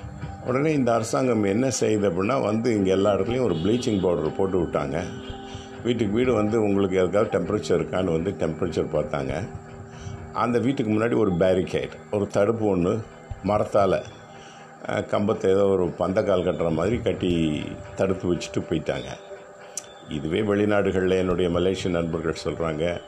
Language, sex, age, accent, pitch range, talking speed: Tamil, male, 50-69, native, 90-115 Hz, 125 wpm